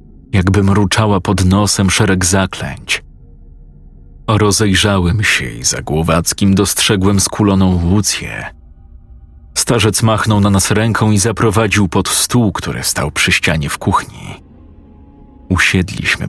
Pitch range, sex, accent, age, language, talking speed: 80-105 Hz, male, native, 40-59, Polish, 110 wpm